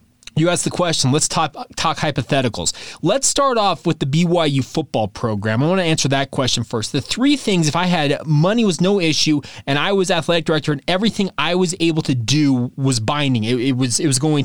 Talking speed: 210 wpm